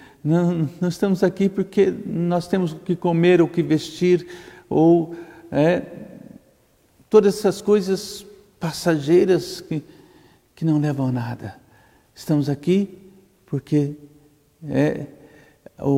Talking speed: 105 wpm